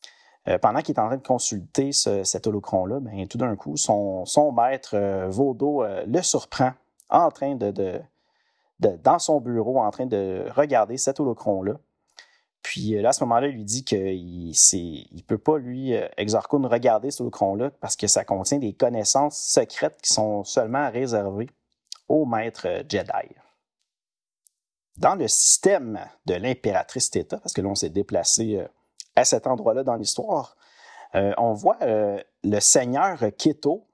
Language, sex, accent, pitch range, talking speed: French, male, Canadian, 100-130 Hz, 165 wpm